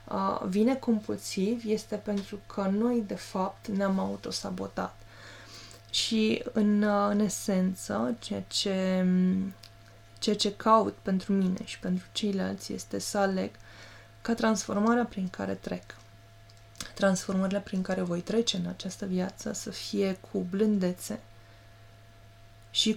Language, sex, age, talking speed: Romanian, female, 20-39, 120 wpm